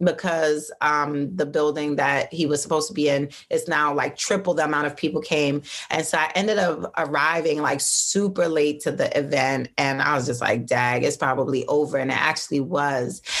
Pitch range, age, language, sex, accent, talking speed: 150-220 Hz, 30-49, English, female, American, 200 wpm